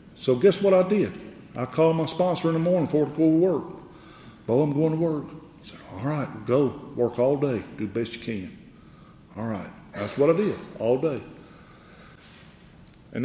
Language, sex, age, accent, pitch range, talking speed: English, male, 50-69, American, 115-165 Hz, 200 wpm